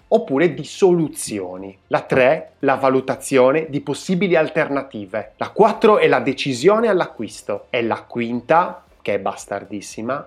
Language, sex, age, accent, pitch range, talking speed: Italian, male, 20-39, native, 125-180 Hz, 130 wpm